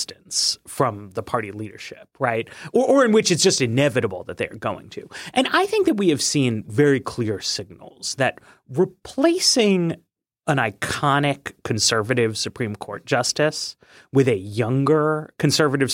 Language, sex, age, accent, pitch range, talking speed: English, male, 30-49, American, 125-190 Hz, 145 wpm